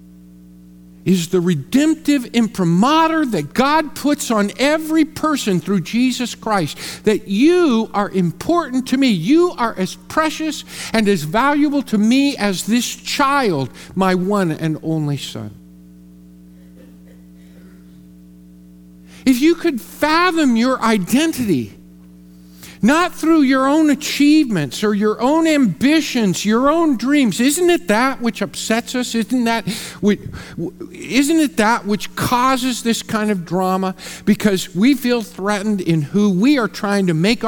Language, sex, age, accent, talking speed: English, male, 50-69, American, 135 wpm